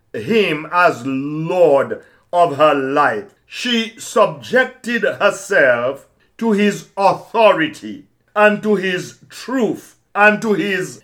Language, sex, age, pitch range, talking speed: English, male, 60-79, 175-220 Hz, 105 wpm